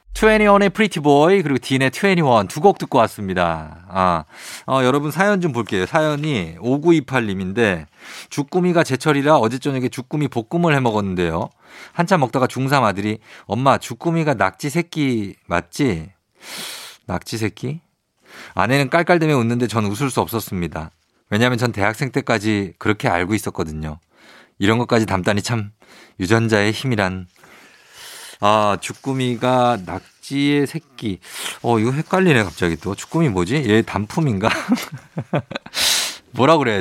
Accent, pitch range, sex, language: native, 105-160 Hz, male, Korean